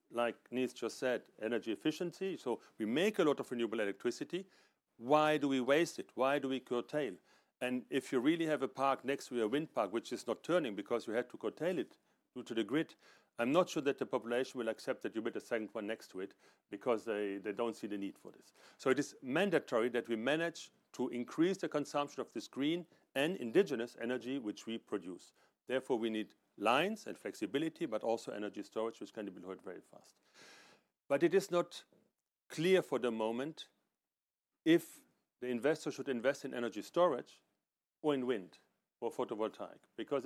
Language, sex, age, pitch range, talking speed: English, male, 40-59, 120-160 Hz, 200 wpm